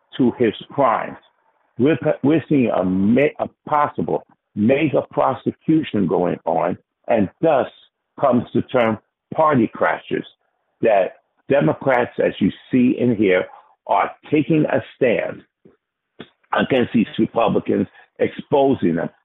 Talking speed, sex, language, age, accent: 110 wpm, male, English, 60-79, American